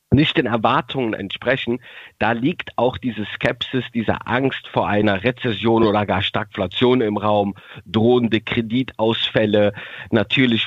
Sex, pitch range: male, 105-130 Hz